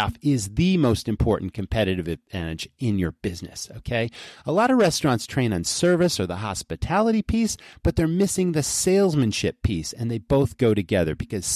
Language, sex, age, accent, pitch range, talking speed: English, male, 40-59, American, 105-150 Hz, 170 wpm